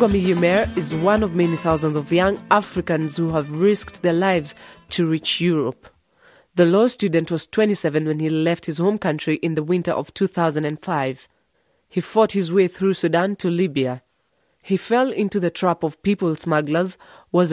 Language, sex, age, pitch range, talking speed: English, female, 30-49, 150-185 Hz, 170 wpm